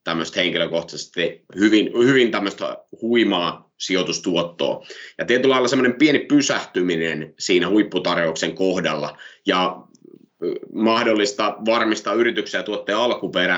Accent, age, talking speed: native, 30-49, 90 wpm